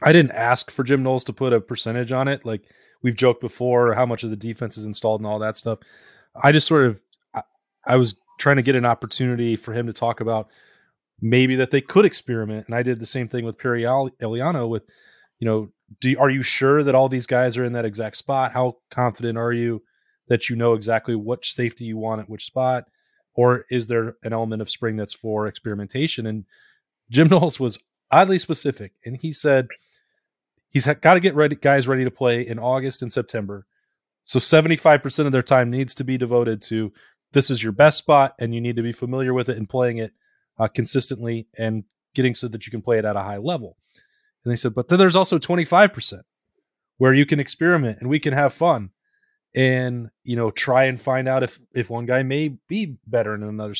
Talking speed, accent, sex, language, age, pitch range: 215 wpm, American, male, English, 20-39, 115-140 Hz